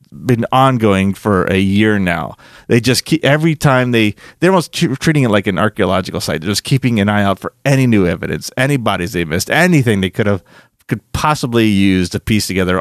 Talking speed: 200 wpm